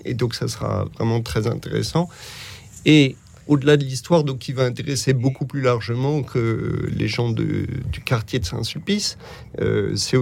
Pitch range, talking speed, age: 115-140 Hz, 165 wpm, 40-59